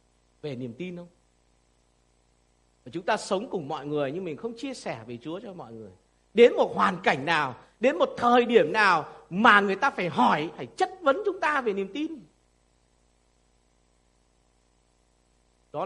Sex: male